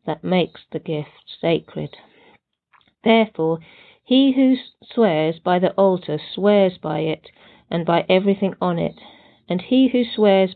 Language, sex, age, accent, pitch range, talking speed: English, female, 40-59, British, 165-220 Hz, 135 wpm